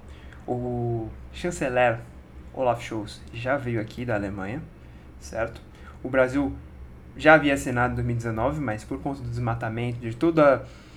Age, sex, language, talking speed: 20-39, male, Portuguese, 130 wpm